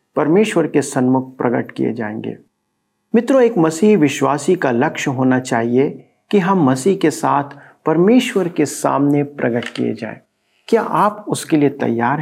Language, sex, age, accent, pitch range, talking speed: Hindi, male, 50-69, native, 130-175 Hz, 145 wpm